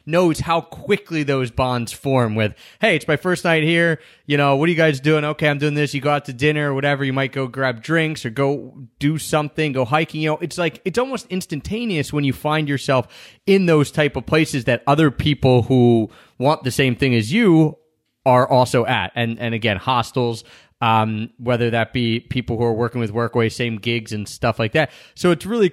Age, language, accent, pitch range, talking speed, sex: 30-49, English, American, 125-170 Hz, 220 wpm, male